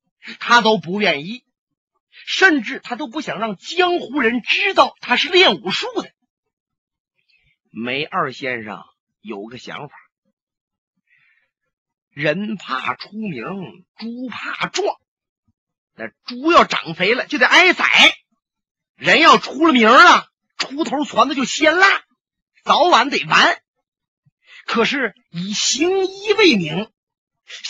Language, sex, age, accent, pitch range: Chinese, male, 40-59, native, 185-300 Hz